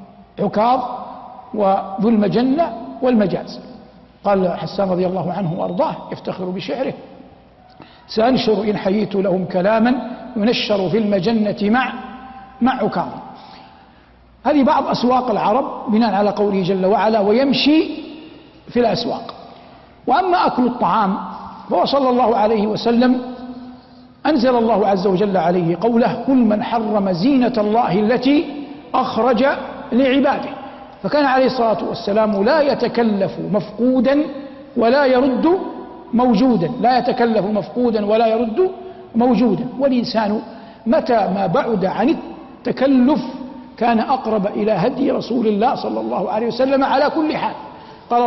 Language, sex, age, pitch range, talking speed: Arabic, male, 60-79, 210-265 Hz, 115 wpm